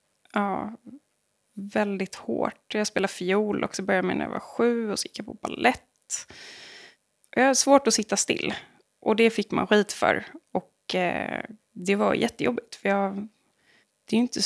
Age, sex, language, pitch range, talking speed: 20-39, female, Swedish, 195-235 Hz, 160 wpm